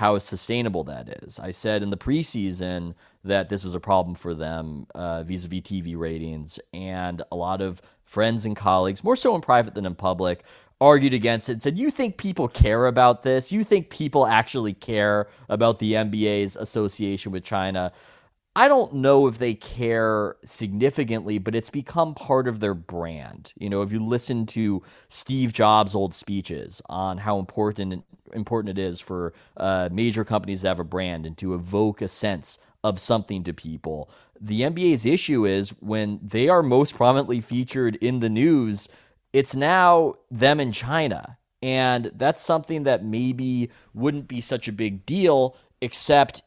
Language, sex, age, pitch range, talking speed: English, male, 30-49, 95-125 Hz, 170 wpm